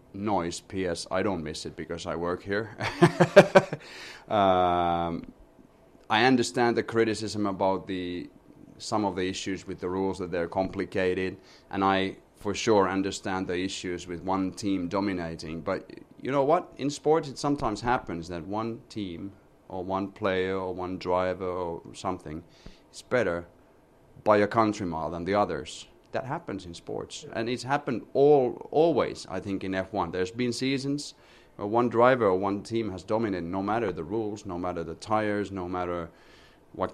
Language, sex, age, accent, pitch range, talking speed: Swedish, male, 30-49, Finnish, 90-110 Hz, 165 wpm